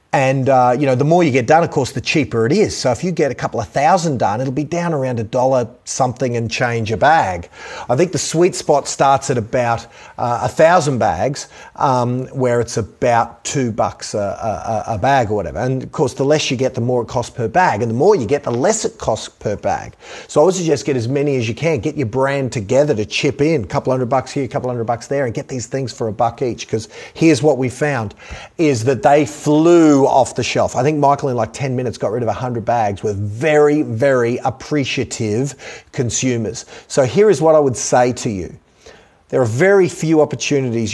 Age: 40-59